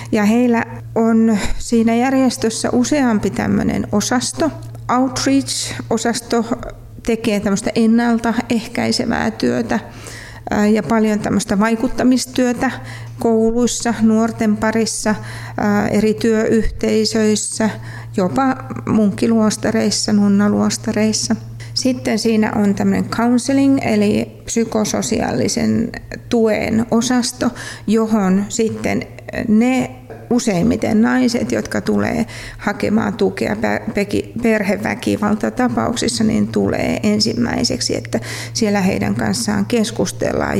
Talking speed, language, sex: 80 wpm, Finnish, female